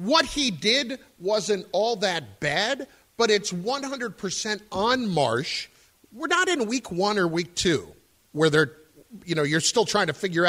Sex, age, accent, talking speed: male, 50-69, American, 165 wpm